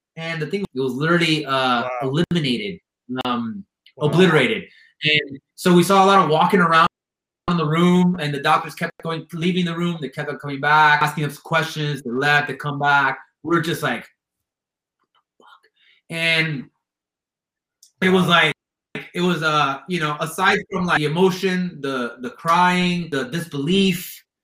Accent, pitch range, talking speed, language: American, 150-190 Hz, 170 wpm, English